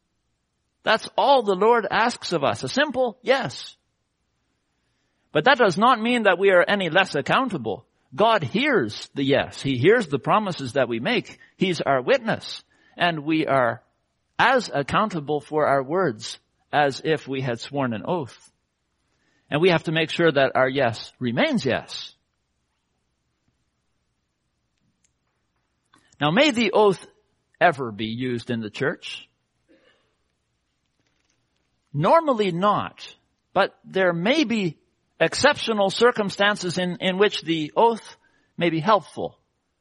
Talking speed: 130 wpm